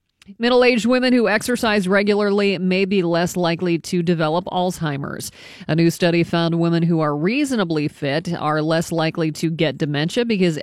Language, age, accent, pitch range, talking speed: English, 40-59, American, 155-200 Hz, 160 wpm